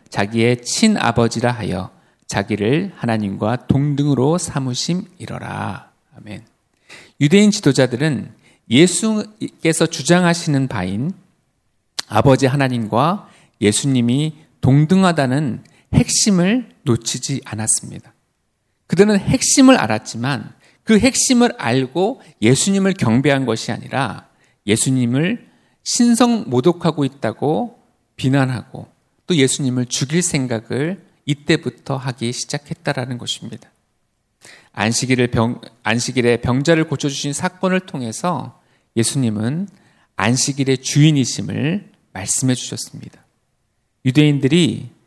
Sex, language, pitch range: male, Korean, 120-180 Hz